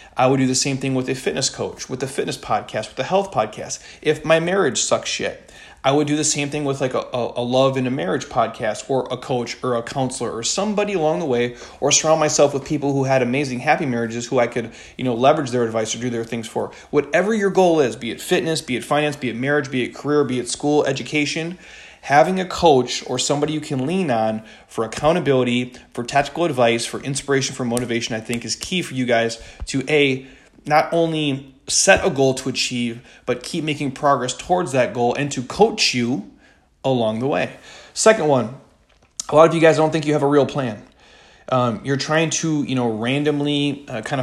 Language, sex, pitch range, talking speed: English, male, 120-150 Hz, 225 wpm